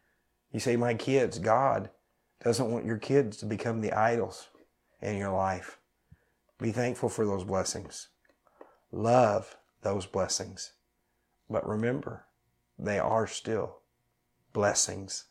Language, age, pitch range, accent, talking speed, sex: English, 50-69, 95-115 Hz, American, 120 wpm, male